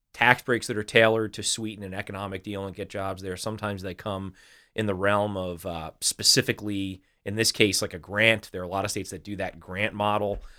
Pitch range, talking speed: 95-110 Hz, 225 wpm